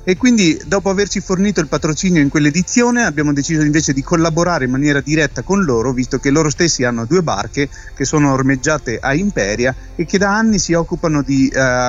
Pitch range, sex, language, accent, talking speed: 135-180 Hz, male, Italian, native, 195 wpm